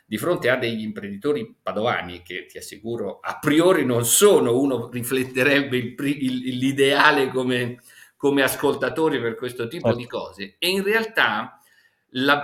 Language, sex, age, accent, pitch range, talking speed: Italian, male, 50-69, native, 125-185 Hz, 145 wpm